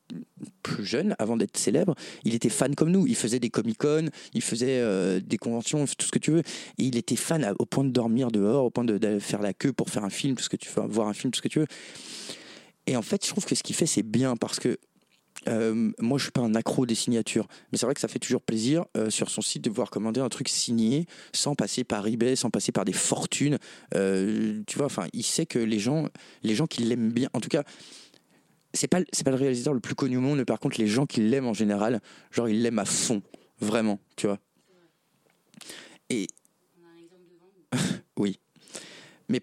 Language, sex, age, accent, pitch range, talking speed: French, male, 30-49, French, 115-140 Hz, 235 wpm